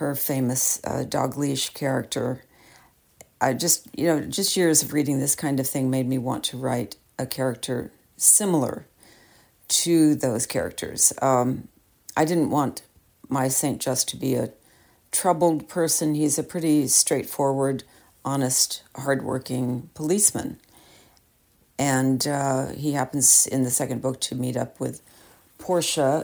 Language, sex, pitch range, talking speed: English, female, 130-155 Hz, 140 wpm